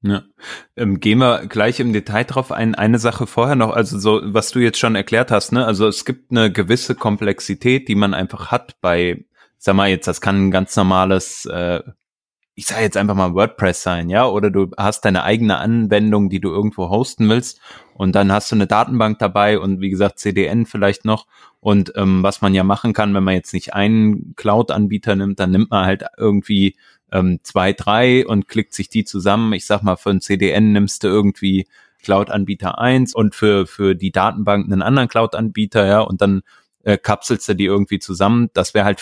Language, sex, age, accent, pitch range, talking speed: German, male, 20-39, German, 95-110 Hz, 200 wpm